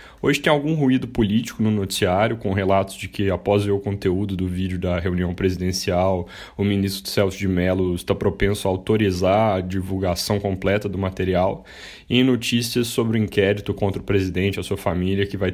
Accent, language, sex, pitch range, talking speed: Brazilian, Portuguese, male, 95-110 Hz, 185 wpm